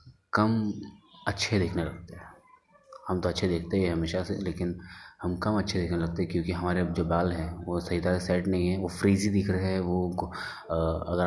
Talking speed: 195 wpm